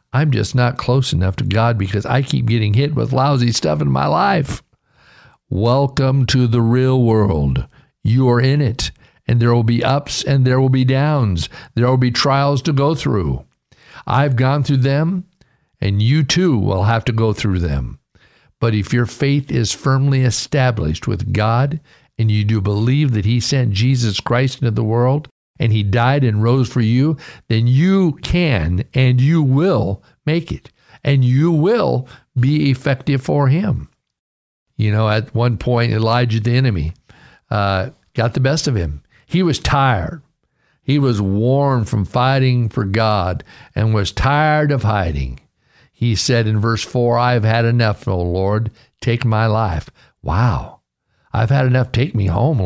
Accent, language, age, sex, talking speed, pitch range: American, English, 50-69, male, 170 wpm, 110-135 Hz